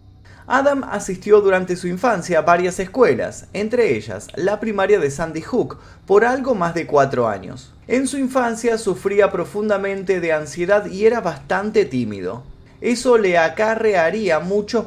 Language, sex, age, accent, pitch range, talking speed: Spanish, male, 20-39, Argentinian, 145-215 Hz, 145 wpm